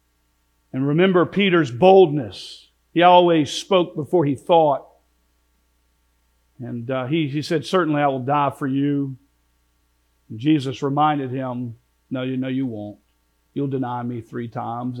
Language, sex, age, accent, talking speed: English, male, 50-69, American, 140 wpm